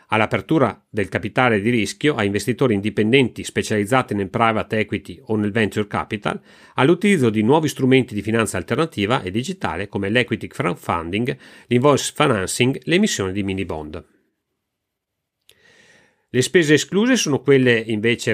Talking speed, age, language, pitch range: 135 wpm, 40-59, Italian, 105-140 Hz